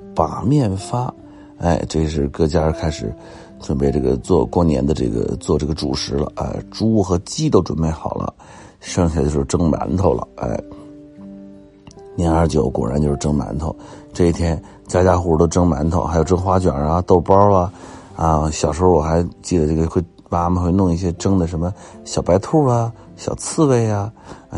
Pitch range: 80-115 Hz